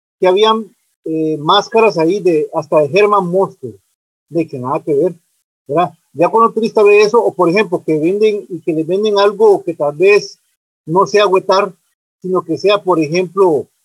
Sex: male